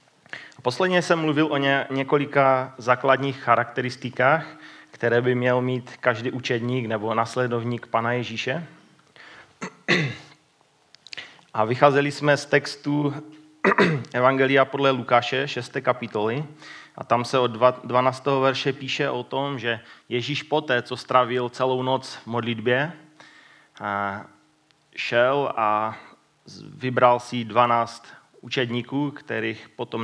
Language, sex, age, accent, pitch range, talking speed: Czech, male, 30-49, native, 120-140 Hz, 105 wpm